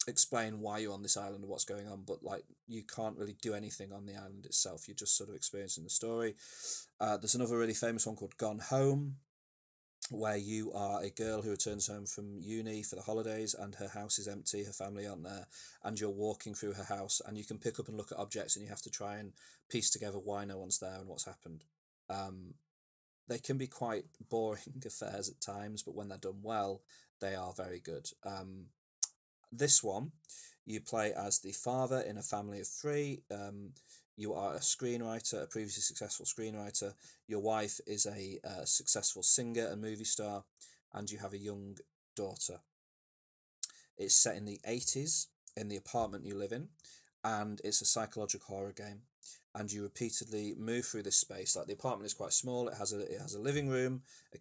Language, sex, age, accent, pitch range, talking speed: English, male, 30-49, British, 100-115 Hz, 205 wpm